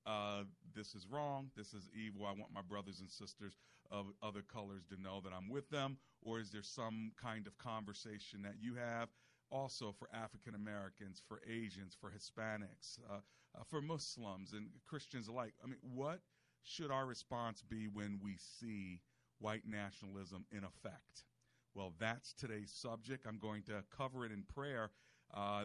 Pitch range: 100-120 Hz